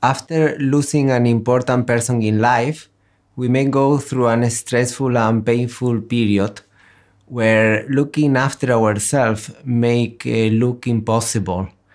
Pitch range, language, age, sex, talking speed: 105-130 Hz, Slovak, 30-49, male, 120 wpm